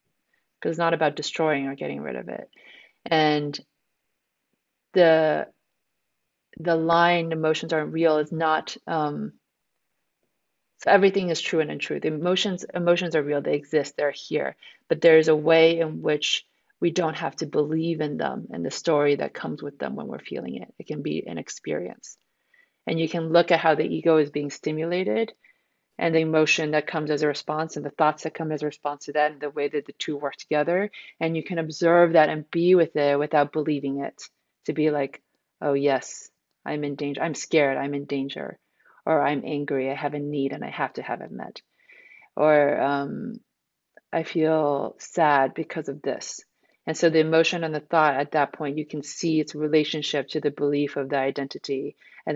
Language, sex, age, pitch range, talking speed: English, female, 30-49, 145-165 Hz, 195 wpm